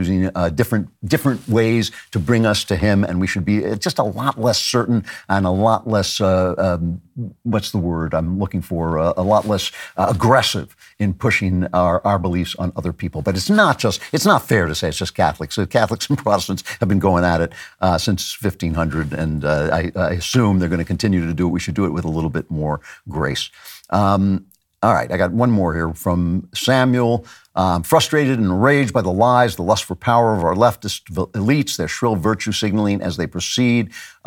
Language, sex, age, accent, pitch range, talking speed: English, male, 60-79, American, 90-115 Hz, 215 wpm